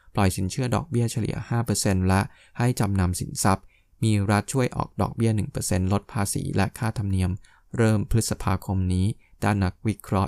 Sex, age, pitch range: male, 20-39, 95-110 Hz